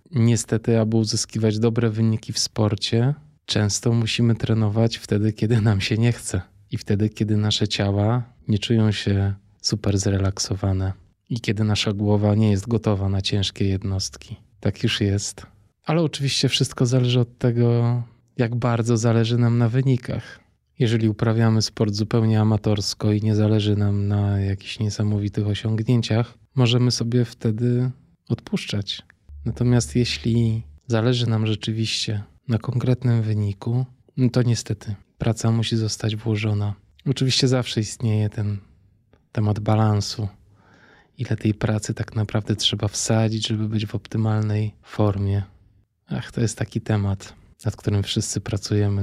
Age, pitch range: 20-39, 105-115 Hz